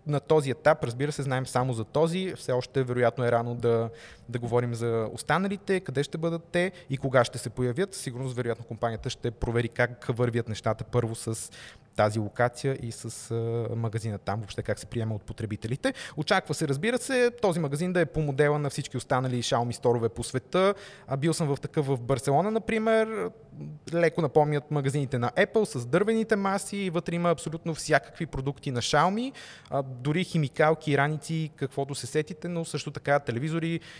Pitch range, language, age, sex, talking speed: 120-155 Hz, Bulgarian, 20-39, male, 175 wpm